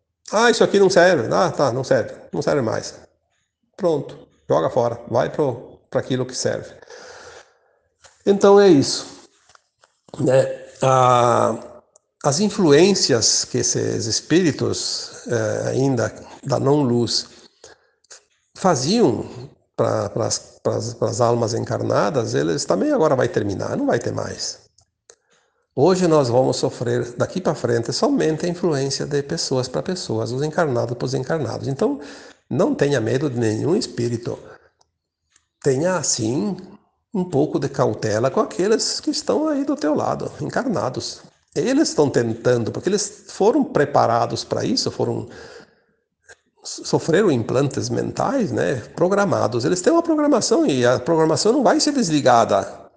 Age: 60-79